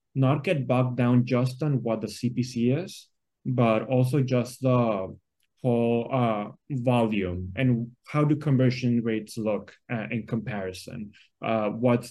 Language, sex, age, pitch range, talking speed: English, male, 20-39, 115-135 Hz, 140 wpm